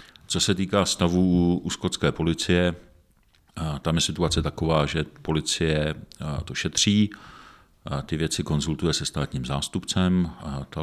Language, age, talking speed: Czech, 50-69, 120 wpm